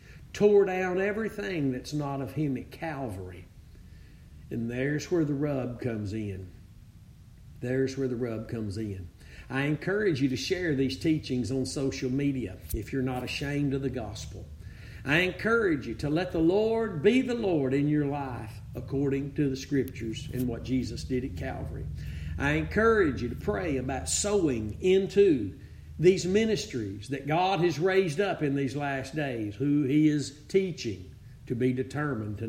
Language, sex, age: English, male, 50-69